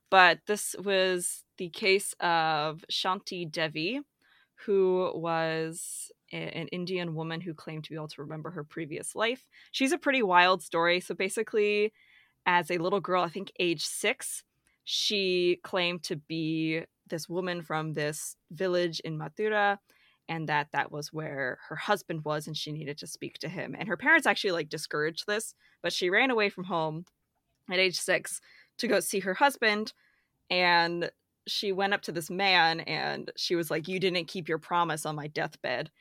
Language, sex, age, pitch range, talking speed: English, female, 20-39, 160-205 Hz, 175 wpm